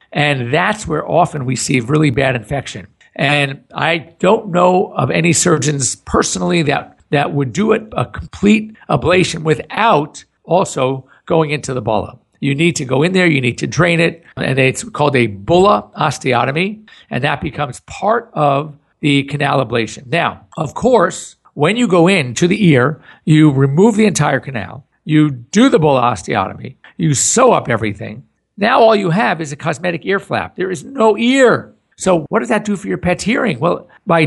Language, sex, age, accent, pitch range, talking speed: English, male, 50-69, American, 135-185 Hz, 180 wpm